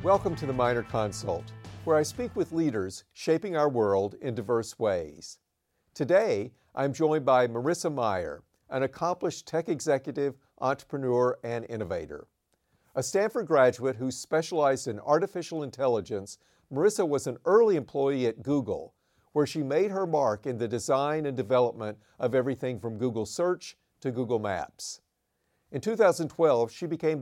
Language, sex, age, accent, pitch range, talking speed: English, male, 50-69, American, 120-155 Hz, 145 wpm